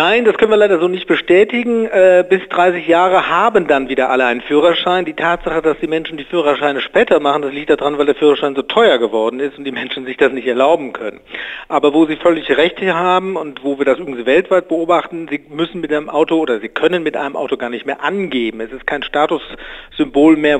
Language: German